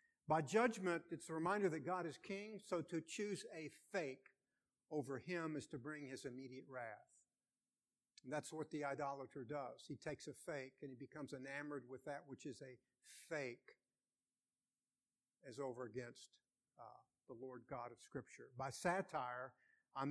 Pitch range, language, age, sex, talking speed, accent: 135-170 Hz, English, 50-69, male, 160 wpm, American